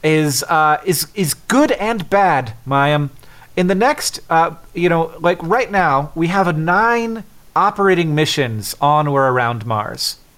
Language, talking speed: English, 155 wpm